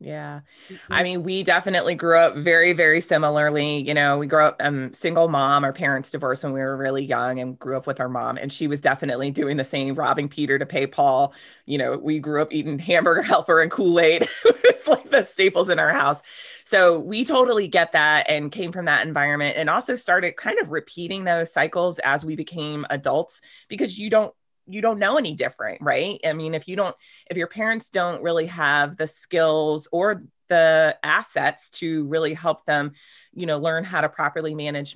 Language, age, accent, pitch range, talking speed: English, 20-39, American, 140-175 Hz, 210 wpm